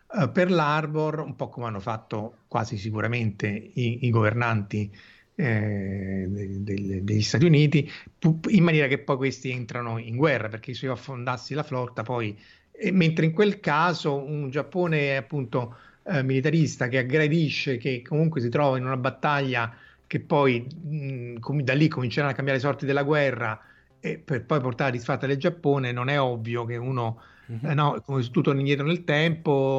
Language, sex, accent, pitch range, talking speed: Italian, male, native, 115-150 Hz, 170 wpm